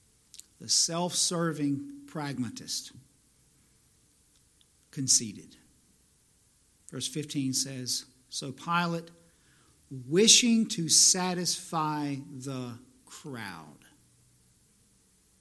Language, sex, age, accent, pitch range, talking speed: English, male, 50-69, American, 130-175 Hz, 55 wpm